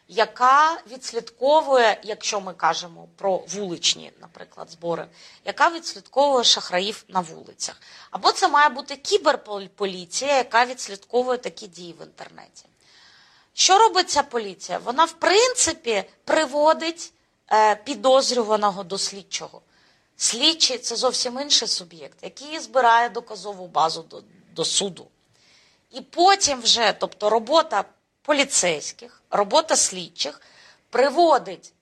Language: Ukrainian